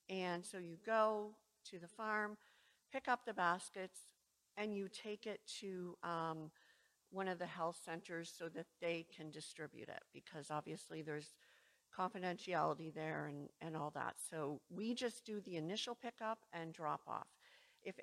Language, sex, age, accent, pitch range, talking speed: English, female, 50-69, American, 165-215 Hz, 160 wpm